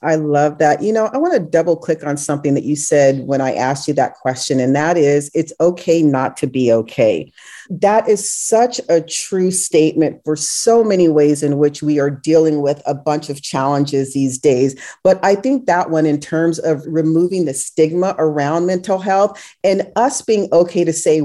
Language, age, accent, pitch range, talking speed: English, 40-59, American, 155-190 Hz, 205 wpm